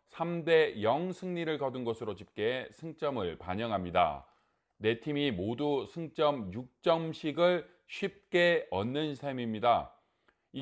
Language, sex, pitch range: Korean, male, 125-160 Hz